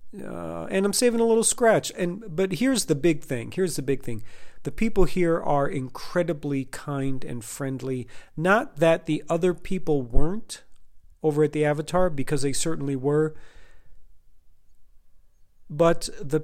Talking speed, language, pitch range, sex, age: 150 wpm, English, 140-180 Hz, male, 40-59